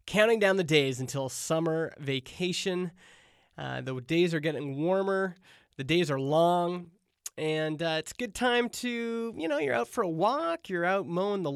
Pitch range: 145-185 Hz